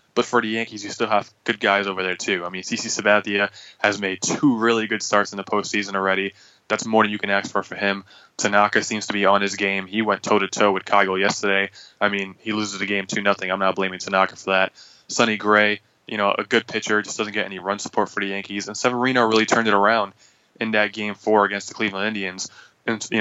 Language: English